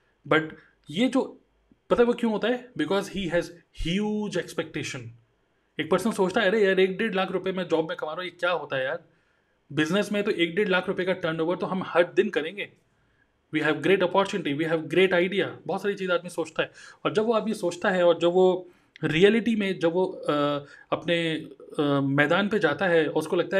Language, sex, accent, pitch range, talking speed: Hindi, male, native, 155-190 Hz, 215 wpm